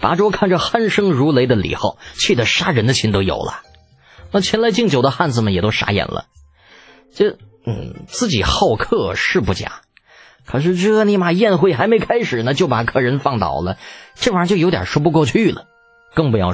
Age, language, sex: 20-39, Chinese, male